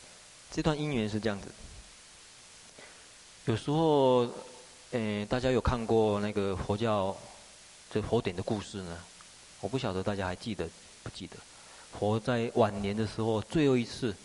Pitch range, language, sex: 95-115 Hz, Chinese, male